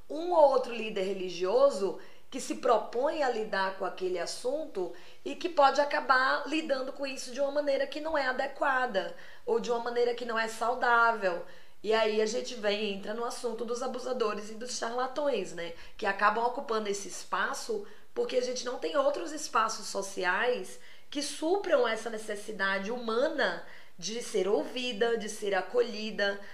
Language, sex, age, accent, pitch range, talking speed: Portuguese, female, 20-39, Brazilian, 215-280 Hz, 165 wpm